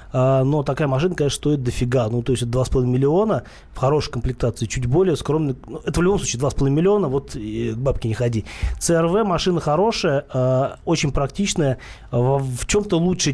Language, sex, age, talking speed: Russian, male, 20-39, 155 wpm